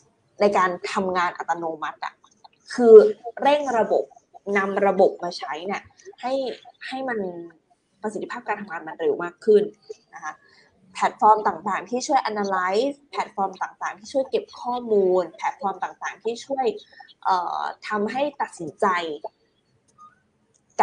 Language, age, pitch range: Thai, 20-39, 190-275 Hz